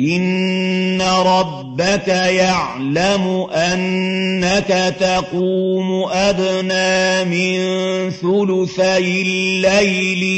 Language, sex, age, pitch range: Arabic, male, 50-69, 185-190 Hz